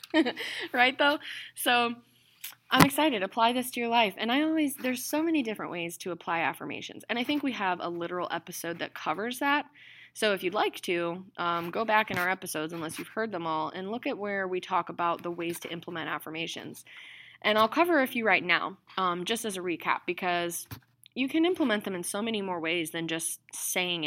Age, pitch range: 20-39, 170-225 Hz